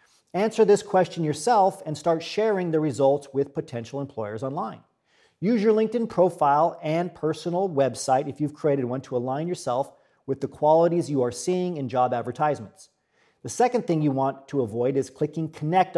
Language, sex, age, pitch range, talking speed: English, male, 40-59, 130-170 Hz, 175 wpm